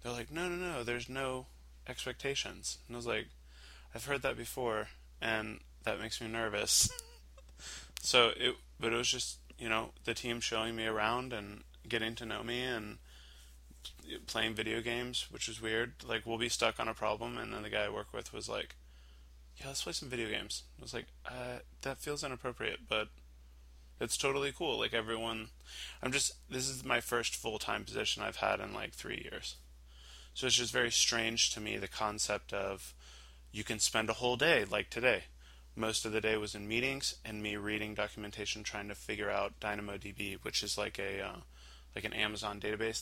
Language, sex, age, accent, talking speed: English, male, 20-39, American, 190 wpm